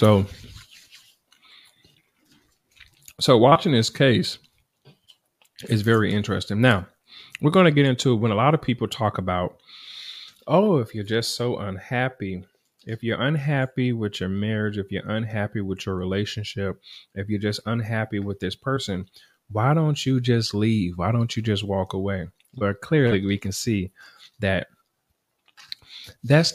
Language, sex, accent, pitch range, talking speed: English, male, American, 100-130 Hz, 145 wpm